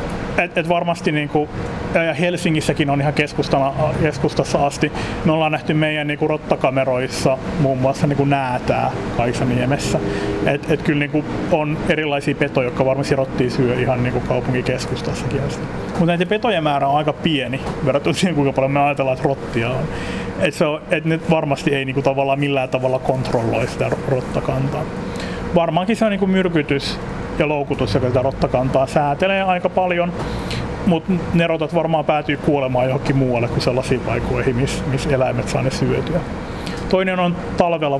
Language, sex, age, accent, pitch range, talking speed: Finnish, male, 30-49, native, 130-160 Hz, 145 wpm